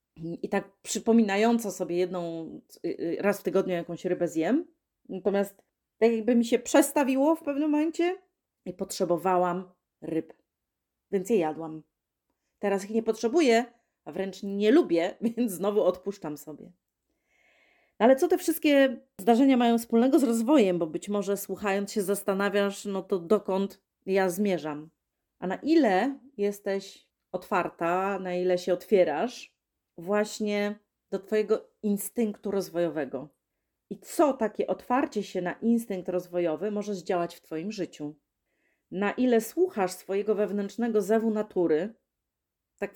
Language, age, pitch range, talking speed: Polish, 30-49, 180-230 Hz, 130 wpm